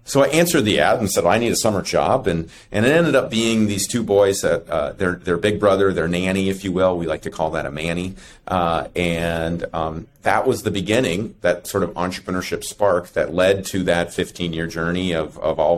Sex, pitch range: male, 85-100 Hz